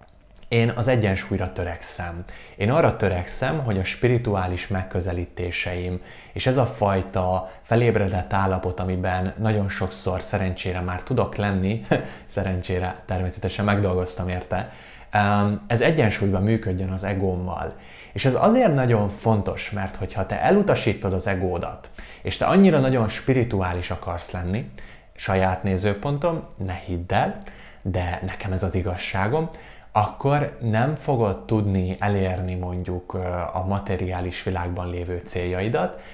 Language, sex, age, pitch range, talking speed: Hungarian, male, 20-39, 90-110 Hz, 120 wpm